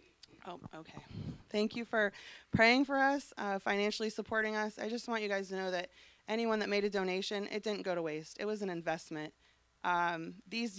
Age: 20-39